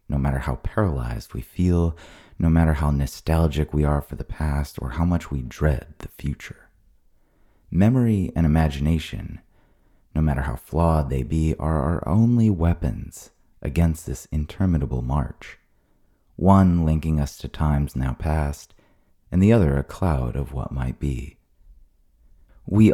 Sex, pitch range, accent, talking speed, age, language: male, 75-100 Hz, American, 145 wpm, 30-49, English